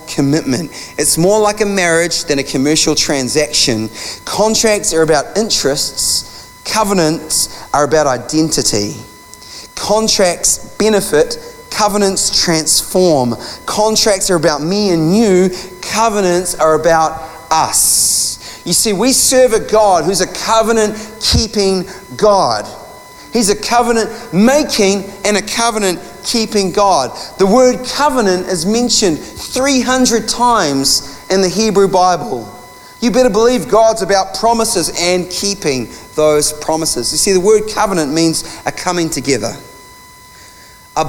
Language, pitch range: English, 150-215 Hz